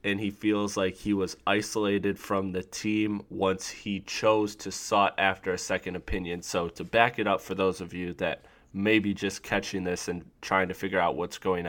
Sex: male